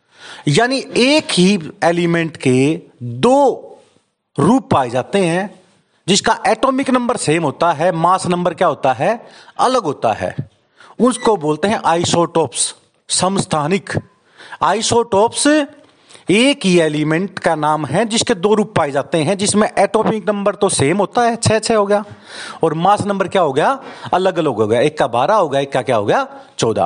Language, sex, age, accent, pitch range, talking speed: Hindi, male, 40-59, native, 155-215 Hz, 160 wpm